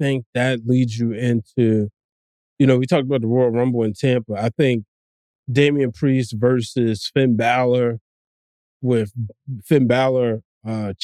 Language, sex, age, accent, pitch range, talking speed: English, male, 20-39, American, 115-150 Hz, 145 wpm